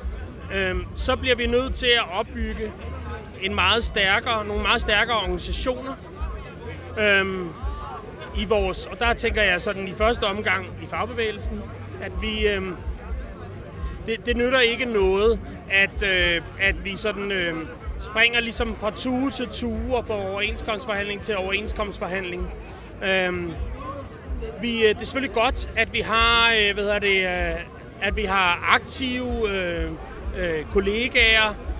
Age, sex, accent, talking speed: 30-49, male, native, 135 wpm